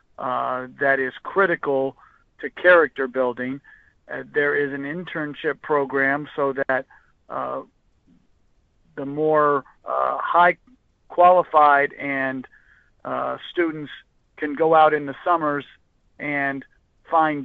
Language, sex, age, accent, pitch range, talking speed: English, male, 50-69, American, 135-155 Hz, 110 wpm